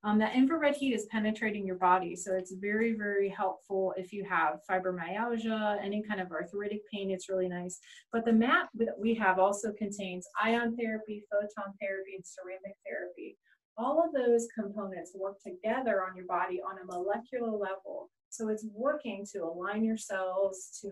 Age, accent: 30-49, American